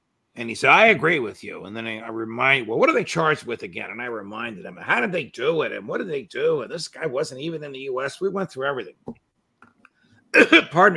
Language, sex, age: English, male, 50-69